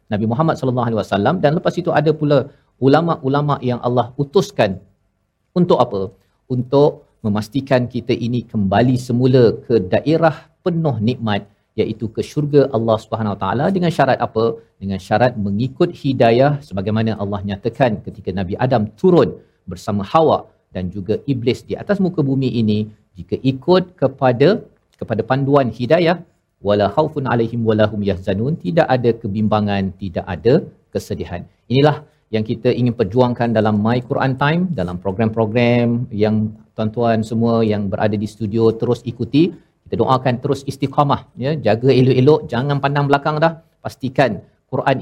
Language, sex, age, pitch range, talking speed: Malayalam, male, 50-69, 110-140 Hz, 145 wpm